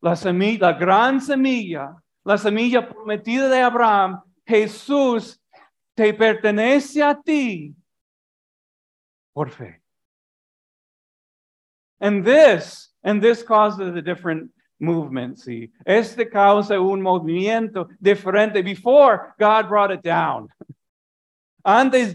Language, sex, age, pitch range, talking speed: English, male, 40-59, 165-245 Hz, 100 wpm